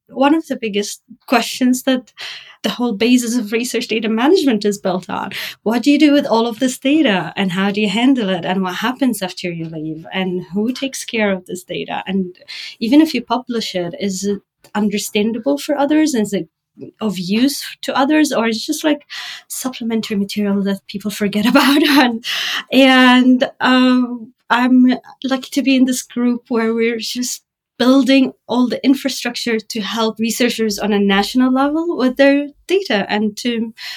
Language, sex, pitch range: English, female, 205-255 Hz